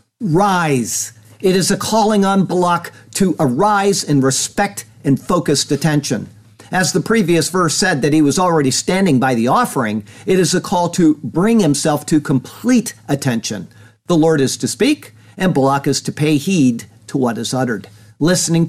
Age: 50-69